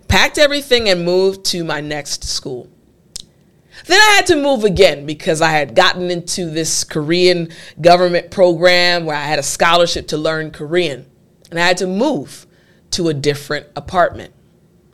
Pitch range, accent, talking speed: 170-270 Hz, American, 160 wpm